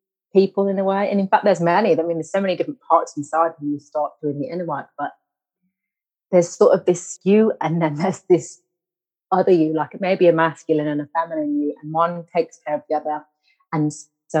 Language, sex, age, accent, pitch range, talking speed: English, female, 30-49, British, 160-210 Hz, 230 wpm